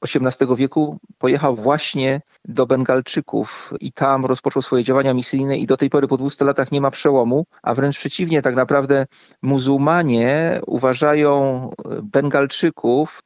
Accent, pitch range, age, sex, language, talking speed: native, 125-140 Hz, 40-59, male, Polish, 135 wpm